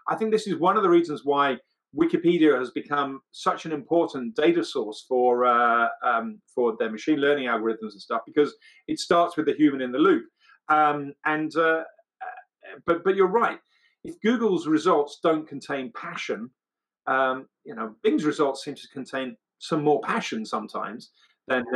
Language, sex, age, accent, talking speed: English, male, 40-59, British, 175 wpm